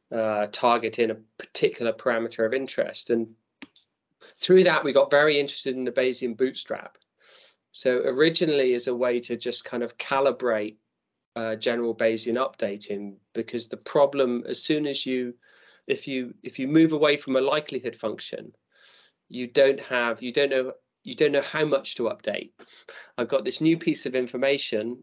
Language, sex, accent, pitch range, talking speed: English, male, British, 110-135 Hz, 165 wpm